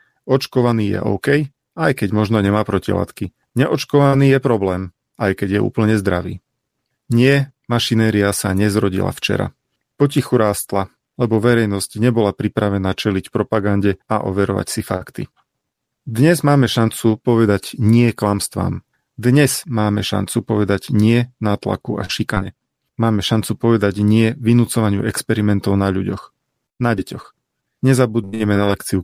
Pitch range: 100-125 Hz